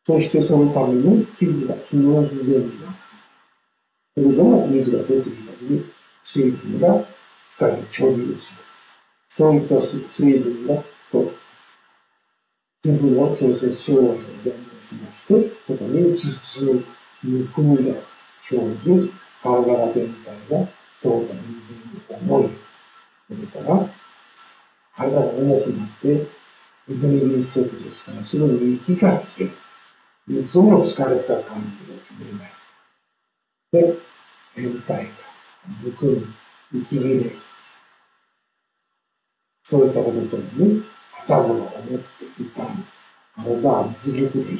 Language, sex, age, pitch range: Japanese, male, 50-69, 125-170 Hz